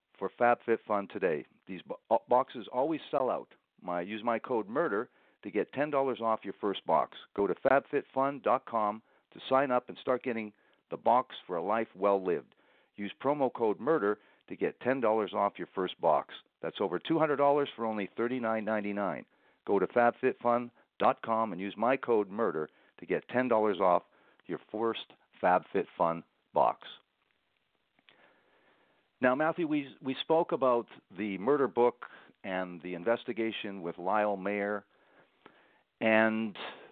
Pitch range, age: 105-125 Hz, 50-69